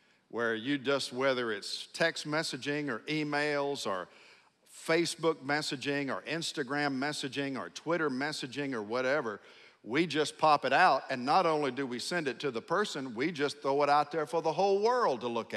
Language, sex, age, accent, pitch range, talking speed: English, male, 50-69, American, 115-160 Hz, 180 wpm